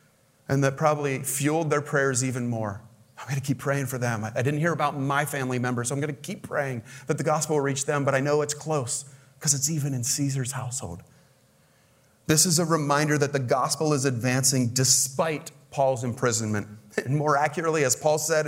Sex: male